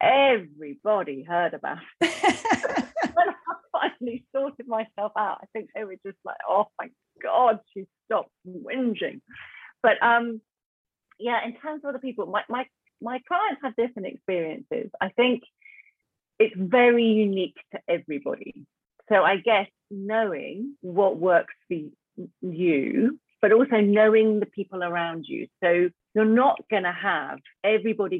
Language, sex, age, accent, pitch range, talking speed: English, female, 40-59, British, 175-235 Hz, 140 wpm